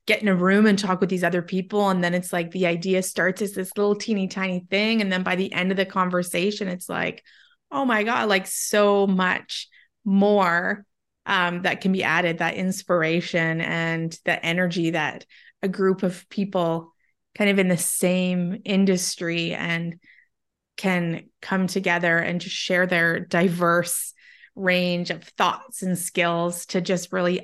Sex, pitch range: female, 175-200 Hz